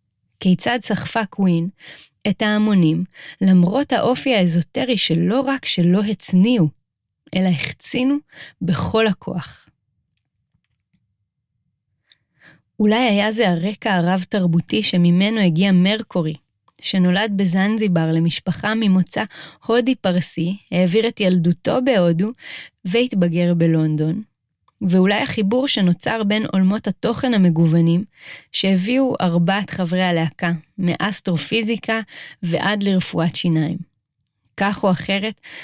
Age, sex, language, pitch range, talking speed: 30-49, female, Hebrew, 170-215 Hz, 90 wpm